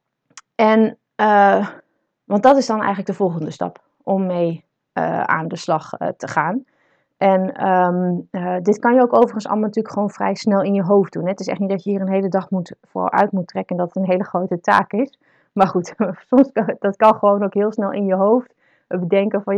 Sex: female